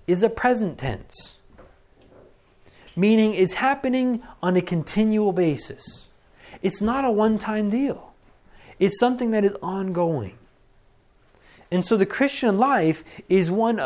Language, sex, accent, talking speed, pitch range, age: English, male, American, 120 wpm, 150-200 Hz, 30-49